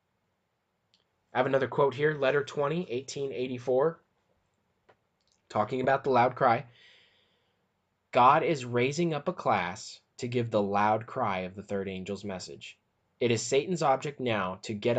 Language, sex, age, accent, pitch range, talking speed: English, male, 20-39, American, 100-130 Hz, 145 wpm